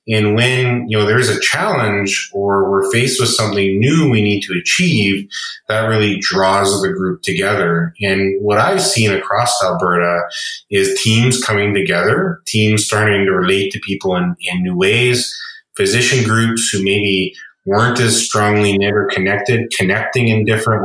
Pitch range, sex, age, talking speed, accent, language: 95-120 Hz, male, 30-49, 160 wpm, American, English